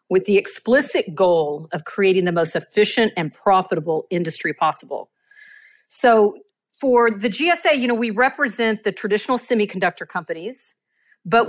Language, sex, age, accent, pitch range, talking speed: English, female, 40-59, American, 175-225 Hz, 135 wpm